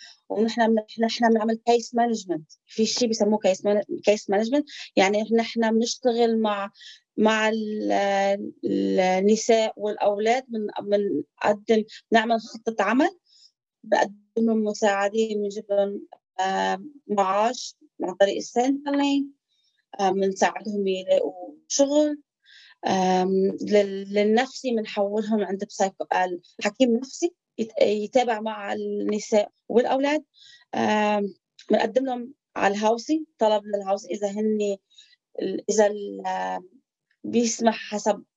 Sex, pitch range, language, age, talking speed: female, 195-240 Hz, English, 20-39, 75 wpm